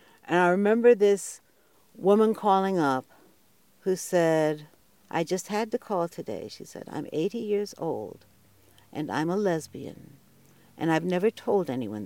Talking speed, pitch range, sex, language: 150 wpm, 170-225 Hz, female, English